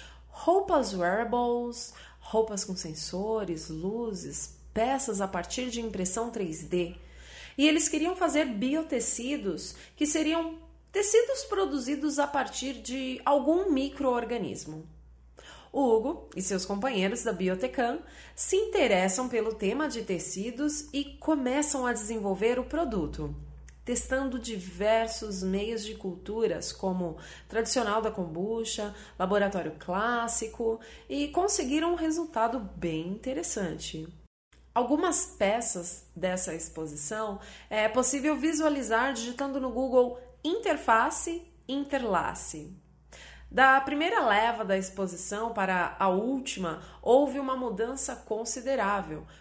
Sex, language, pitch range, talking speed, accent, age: female, Portuguese, 195-275 Hz, 105 wpm, Brazilian, 30-49